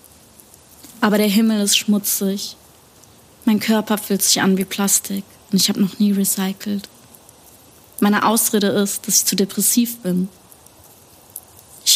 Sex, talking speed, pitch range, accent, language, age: female, 135 wpm, 190-205 Hz, German, German, 30-49